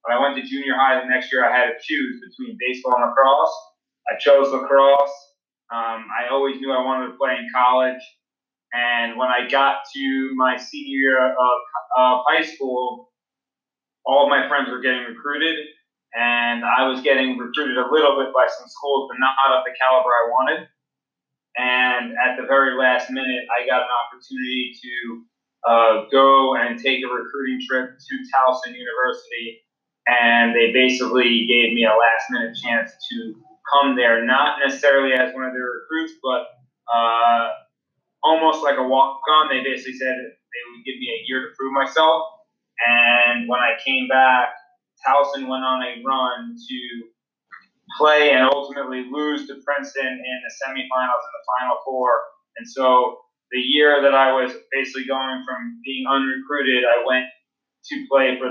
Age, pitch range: 30-49, 125-140 Hz